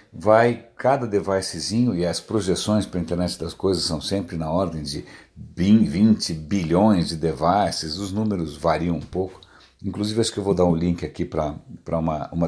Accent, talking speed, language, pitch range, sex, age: Brazilian, 180 wpm, Portuguese, 95-125 Hz, male, 60-79